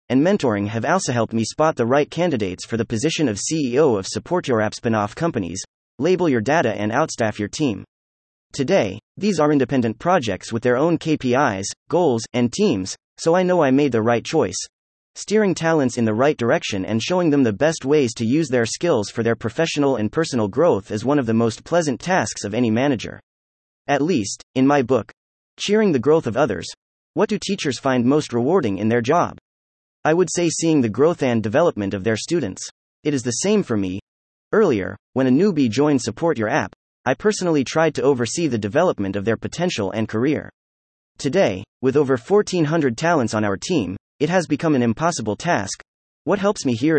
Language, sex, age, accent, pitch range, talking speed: English, male, 30-49, American, 110-160 Hz, 195 wpm